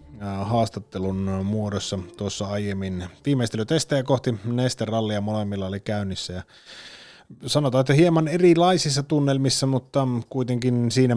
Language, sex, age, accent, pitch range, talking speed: Finnish, male, 30-49, native, 95-120 Hz, 100 wpm